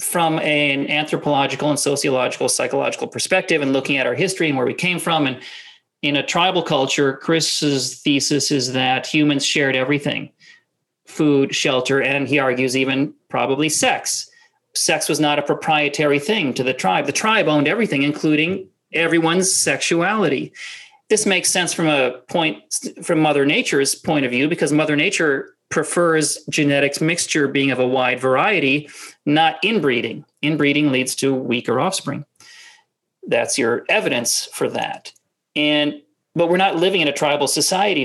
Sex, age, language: male, 40-59, English